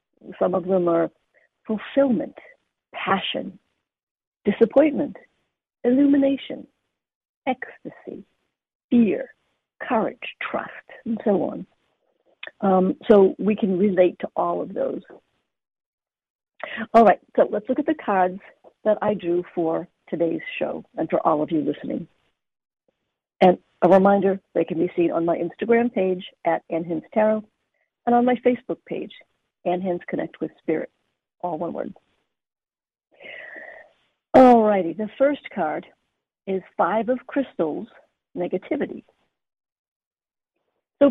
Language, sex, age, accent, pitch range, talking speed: English, female, 60-79, American, 190-275 Hz, 120 wpm